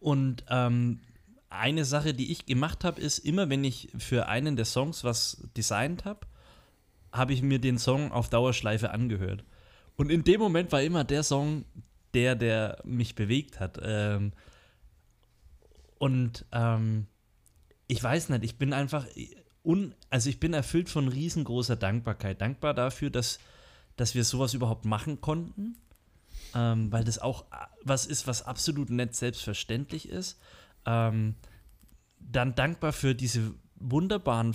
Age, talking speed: 30-49, 145 wpm